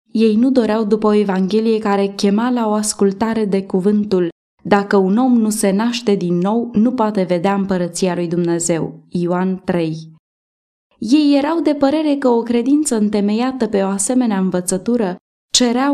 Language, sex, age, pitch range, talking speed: Romanian, female, 20-39, 200-250 Hz, 160 wpm